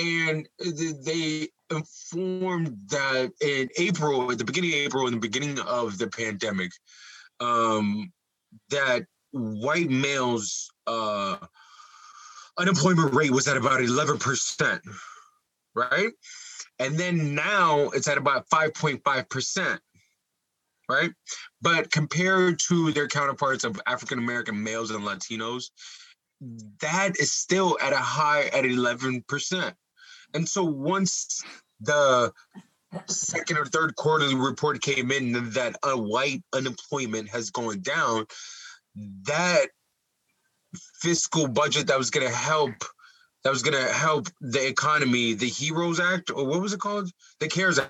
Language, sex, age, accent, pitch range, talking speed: English, male, 20-39, American, 130-175 Hz, 125 wpm